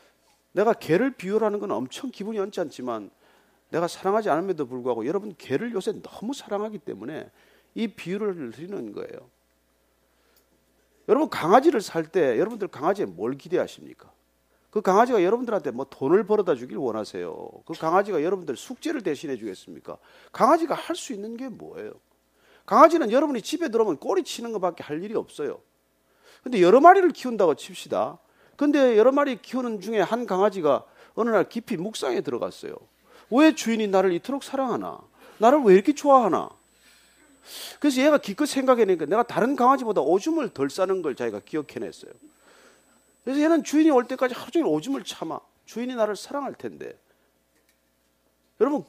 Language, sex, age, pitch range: Korean, male, 40-59, 190-310 Hz